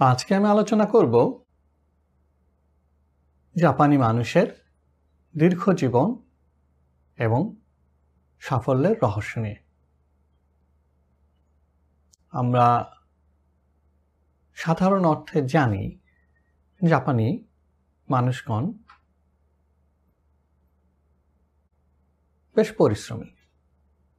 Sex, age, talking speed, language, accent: male, 60-79, 50 wpm, Bengali, native